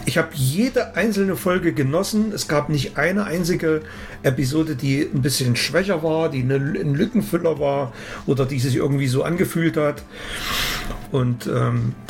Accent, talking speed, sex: German, 150 wpm, male